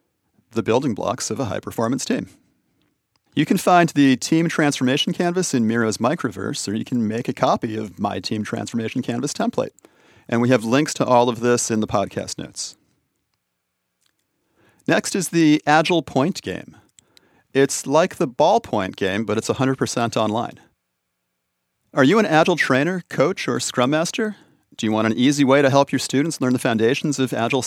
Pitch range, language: 110-150 Hz, English